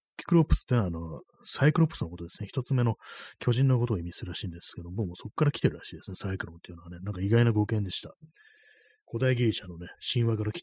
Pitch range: 90-120 Hz